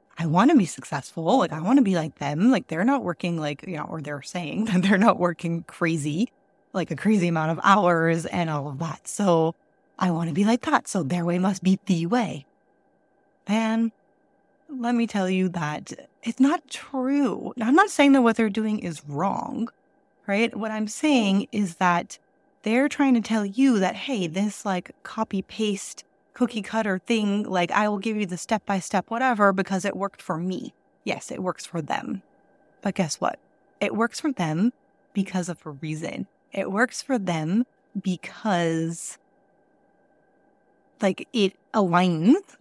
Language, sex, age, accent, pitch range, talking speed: English, female, 30-49, American, 175-240 Hz, 175 wpm